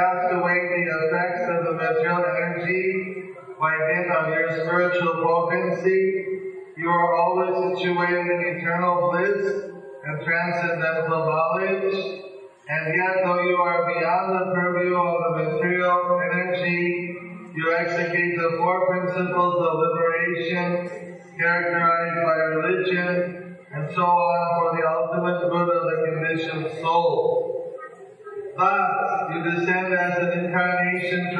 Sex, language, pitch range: male, English, 170-185 Hz